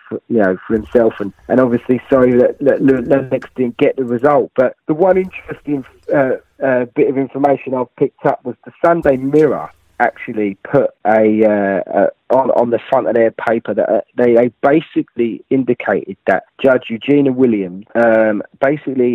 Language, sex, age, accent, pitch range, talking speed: English, male, 20-39, British, 115-140 Hz, 180 wpm